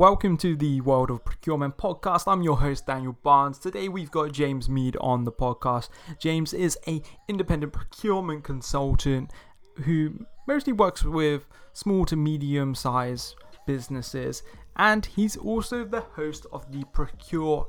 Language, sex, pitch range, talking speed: English, male, 135-170 Hz, 145 wpm